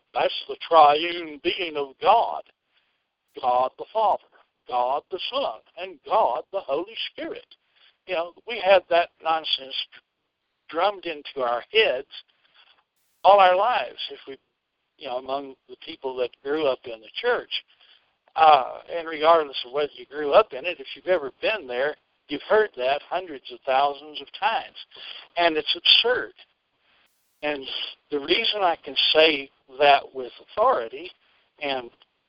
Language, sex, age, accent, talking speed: English, male, 60-79, American, 145 wpm